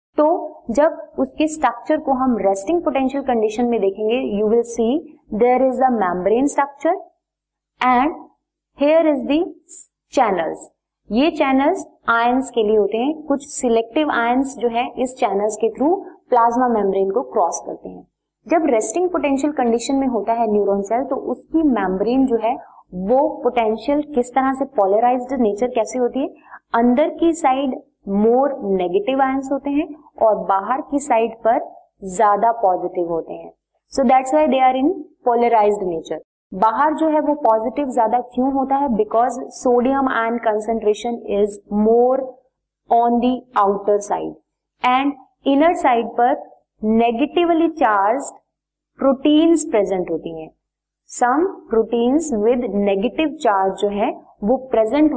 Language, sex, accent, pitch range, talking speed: Hindi, female, native, 220-285 Hz, 140 wpm